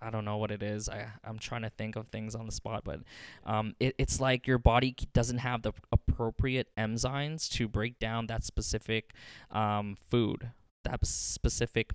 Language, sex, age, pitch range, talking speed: English, male, 10-29, 105-120 Hz, 185 wpm